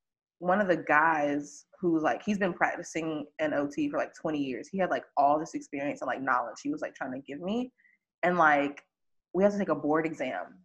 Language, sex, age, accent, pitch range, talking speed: English, female, 20-39, American, 150-205 Hz, 225 wpm